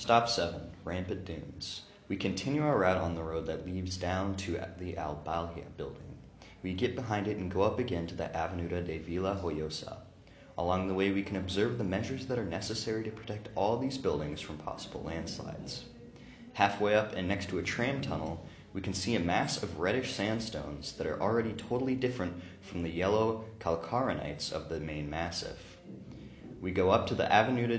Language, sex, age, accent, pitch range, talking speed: Czech, male, 30-49, American, 85-105 Hz, 185 wpm